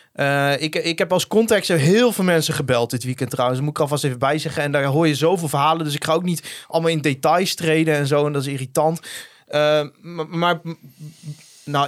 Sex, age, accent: male, 20-39, Dutch